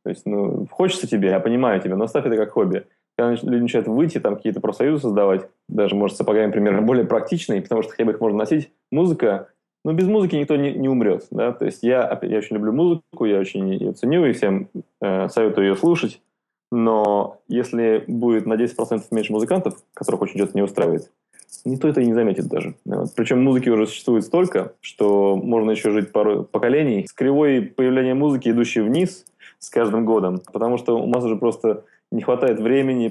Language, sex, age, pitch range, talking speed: Russian, male, 20-39, 100-125 Hz, 195 wpm